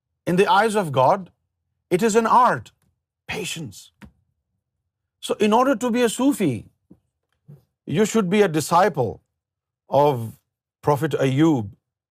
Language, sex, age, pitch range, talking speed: Urdu, male, 50-69, 120-175 Hz, 125 wpm